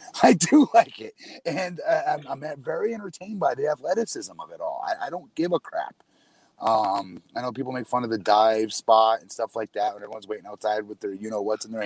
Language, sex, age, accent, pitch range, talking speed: English, male, 30-49, American, 110-155 Hz, 240 wpm